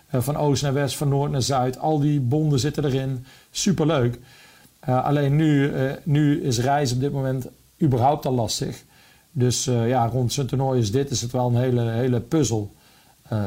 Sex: male